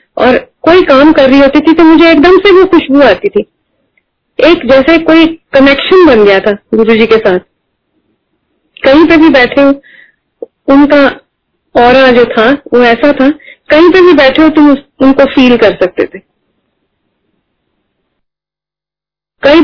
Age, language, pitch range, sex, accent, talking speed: 30-49, Hindi, 245-290 Hz, female, native, 155 wpm